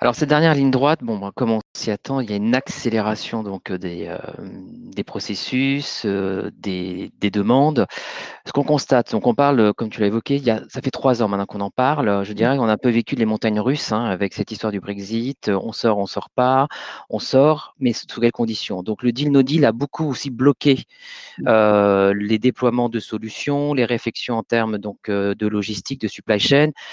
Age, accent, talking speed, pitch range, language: 40-59, French, 220 wpm, 115-140 Hz, French